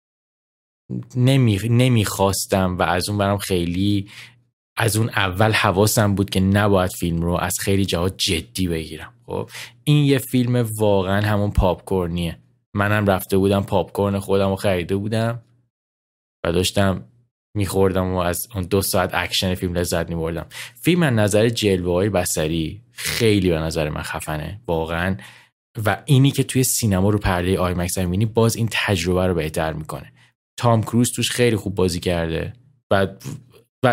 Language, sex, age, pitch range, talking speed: Persian, male, 20-39, 90-110 Hz, 150 wpm